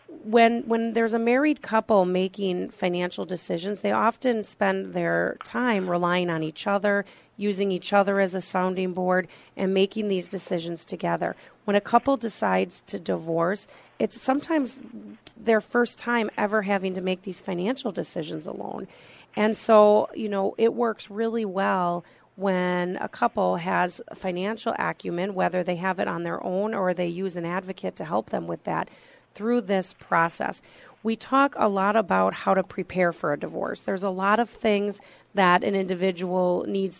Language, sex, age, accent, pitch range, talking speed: English, female, 30-49, American, 180-220 Hz, 170 wpm